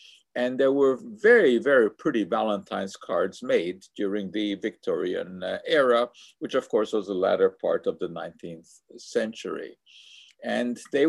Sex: male